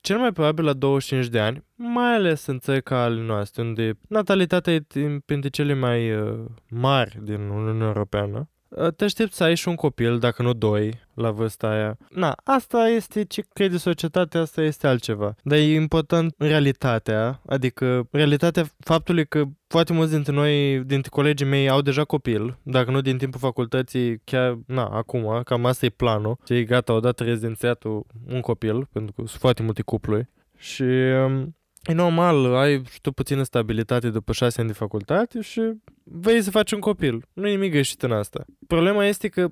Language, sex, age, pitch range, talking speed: Romanian, male, 20-39, 120-165 Hz, 175 wpm